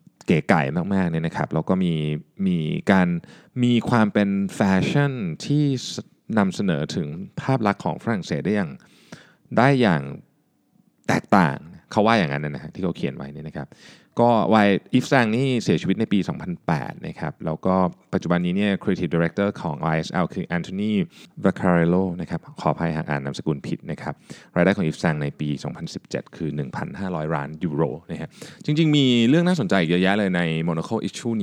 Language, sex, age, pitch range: Thai, male, 20-39, 85-140 Hz